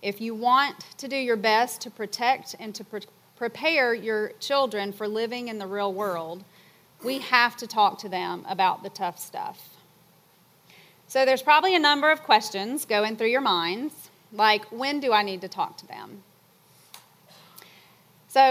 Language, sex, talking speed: English, female, 165 wpm